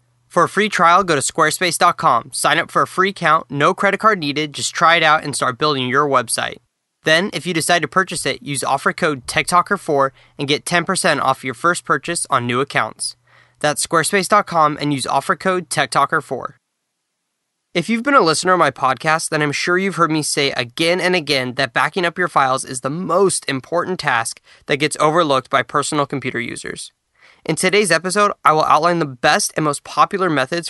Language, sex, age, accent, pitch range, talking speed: English, male, 10-29, American, 135-175 Hz, 195 wpm